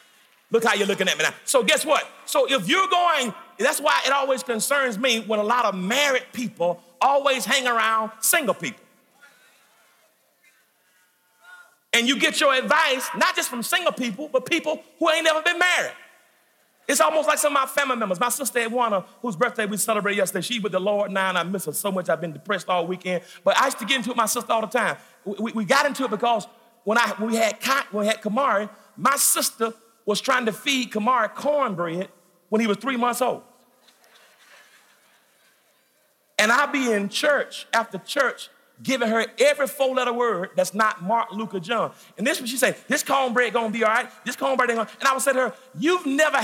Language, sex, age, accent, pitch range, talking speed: English, male, 40-59, American, 215-275 Hz, 215 wpm